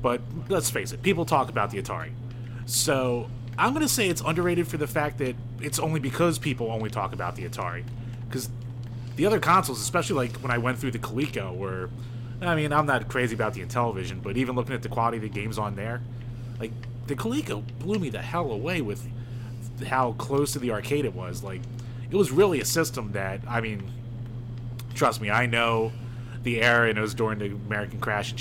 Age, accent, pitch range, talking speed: 30-49, American, 115-130 Hz, 210 wpm